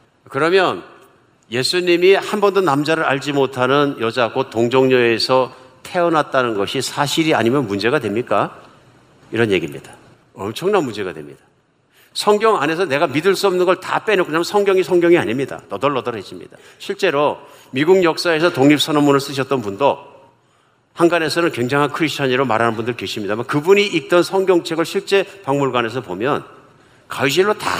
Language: Korean